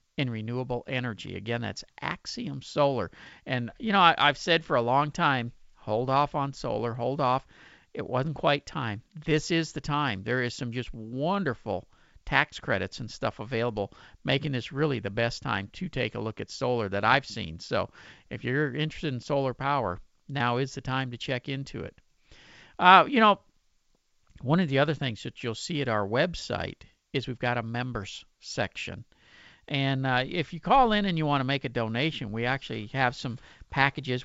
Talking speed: 185 wpm